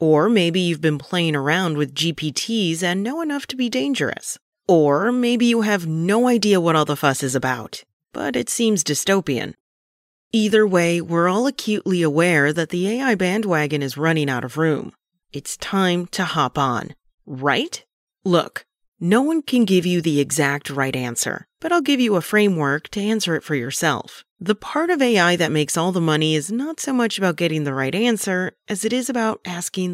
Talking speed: 190 wpm